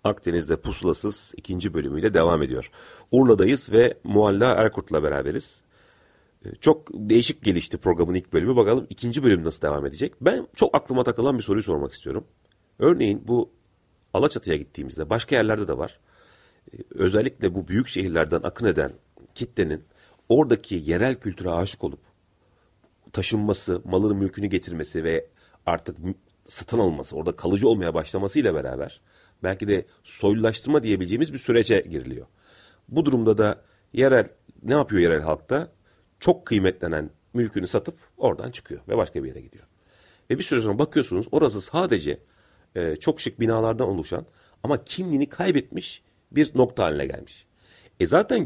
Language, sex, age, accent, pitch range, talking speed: Turkish, male, 40-59, native, 95-125 Hz, 135 wpm